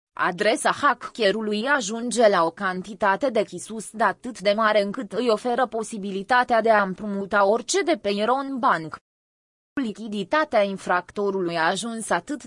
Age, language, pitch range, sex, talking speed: 20-39, Romanian, 195-255 Hz, female, 140 wpm